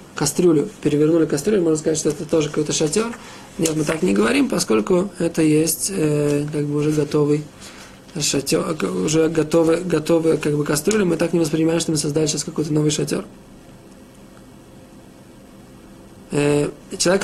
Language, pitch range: Russian, 155-180 Hz